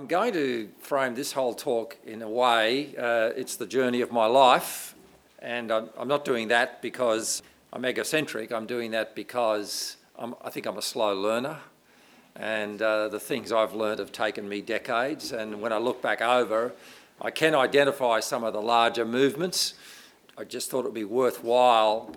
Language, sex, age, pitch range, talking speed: English, male, 50-69, 110-130 Hz, 180 wpm